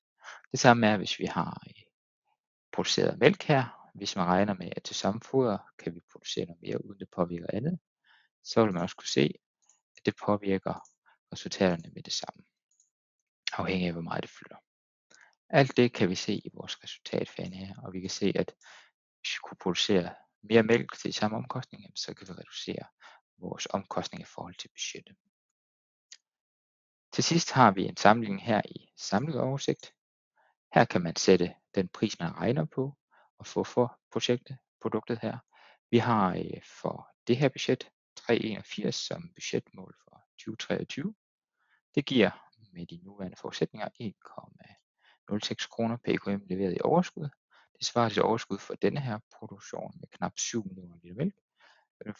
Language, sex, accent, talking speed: Danish, male, native, 160 wpm